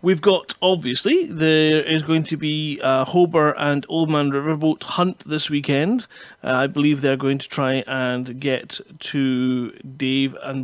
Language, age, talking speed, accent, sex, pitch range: English, 30-49, 165 wpm, British, male, 135-185 Hz